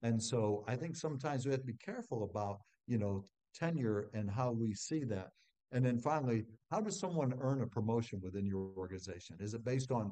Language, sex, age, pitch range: English, male, 60-79, 105-125 Hz